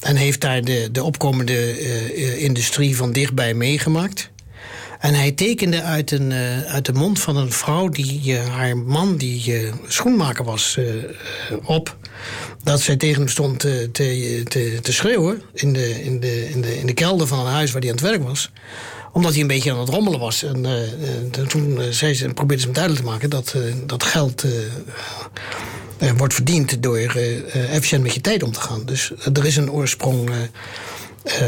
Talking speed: 200 wpm